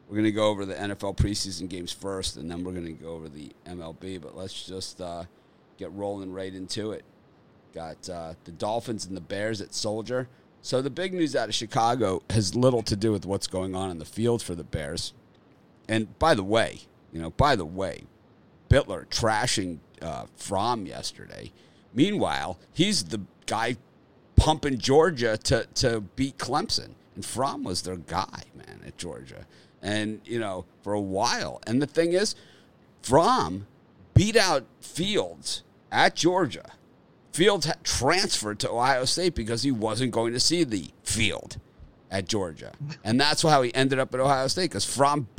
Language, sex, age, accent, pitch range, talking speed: English, male, 50-69, American, 90-125 Hz, 175 wpm